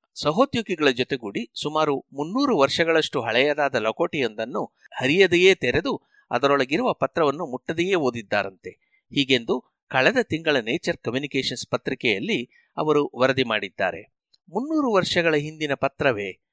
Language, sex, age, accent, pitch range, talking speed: Kannada, male, 60-79, native, 130-190 Hz, 95 wpm